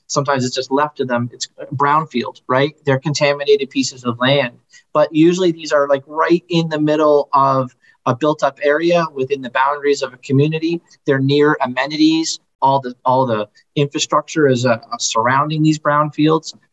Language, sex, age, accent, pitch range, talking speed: English, male, 30-49, American, 130-170 Hz, 170 wpm